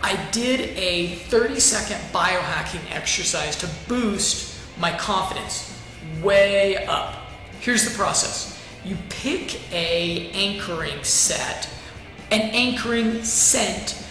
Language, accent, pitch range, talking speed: English, American, 170-210 Hz, 100 wpm